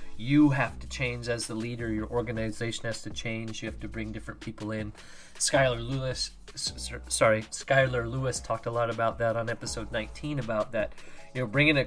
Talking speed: 190 wpm